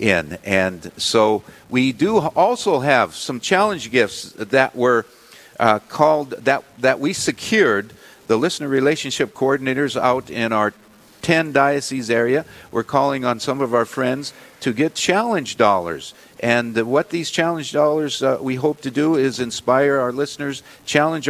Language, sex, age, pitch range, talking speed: English, male, 50-69, 115-140 Hz, 150 wpm